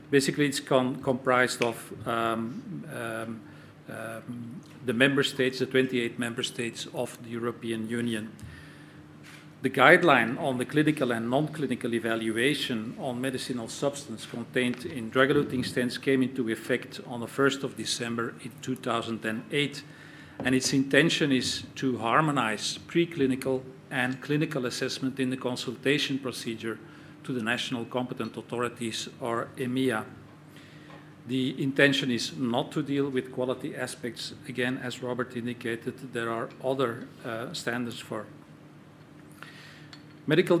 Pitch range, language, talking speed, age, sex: 120-145 Hz, English, 125 wpm, 40-59, male